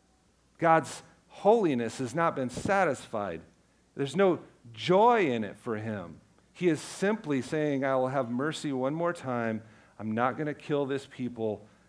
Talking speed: 155 wpm